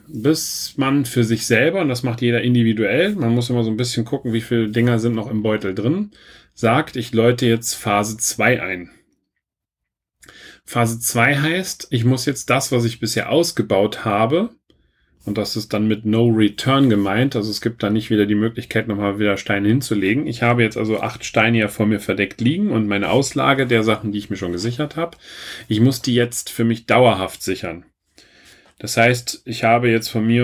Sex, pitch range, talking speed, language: male, 110-130 Hz, 200 wpm, German